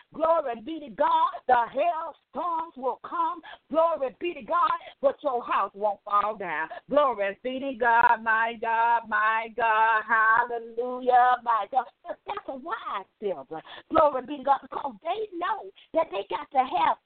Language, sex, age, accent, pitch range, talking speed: English, female, 50-69, American, 245-355 Hz, 165 wpm